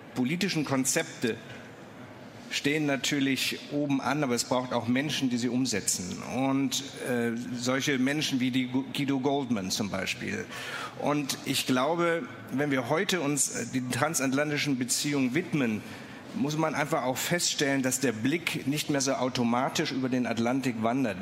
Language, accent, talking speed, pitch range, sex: German, German, 145 wpm, 125-145 Hz, male